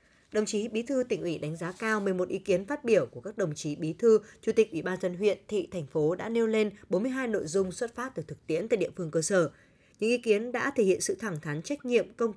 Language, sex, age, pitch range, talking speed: Vietnamese, female, 20-39, 175-235 Hz, 275 wpm